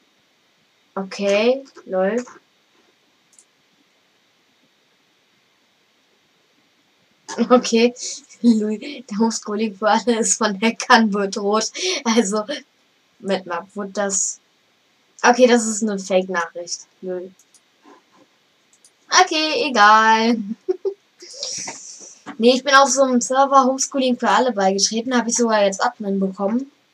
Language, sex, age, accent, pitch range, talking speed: German, female, 10-29, German, 200-250 Hz, 95 wpm